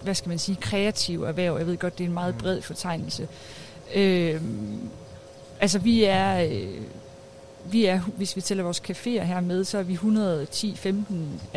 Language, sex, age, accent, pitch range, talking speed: Danish, female, 30-49, native, 170-210 Hz, 165 wpm